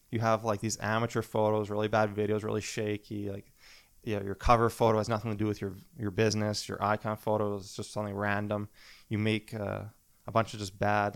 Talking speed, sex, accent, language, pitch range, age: 215 wpm, male, American, English, 100-115 Hz, 20-39